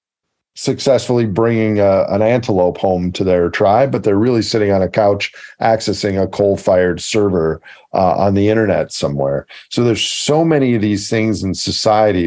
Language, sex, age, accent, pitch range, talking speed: English, male, 50-69, American, 90-110 Hz, 160 wpm